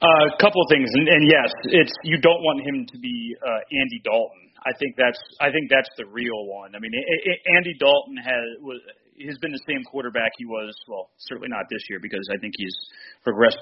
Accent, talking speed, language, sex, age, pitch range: American, 230 wpm, English, male, 30-49, 115-140 Hz